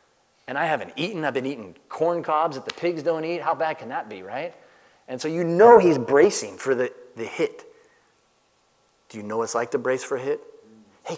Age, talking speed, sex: 30-49, 225 wpm, male